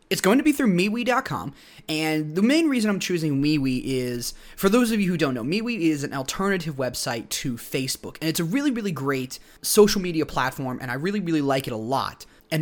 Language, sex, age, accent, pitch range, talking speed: English, male, 20-39, American, 140-195 Hz, 220 wpm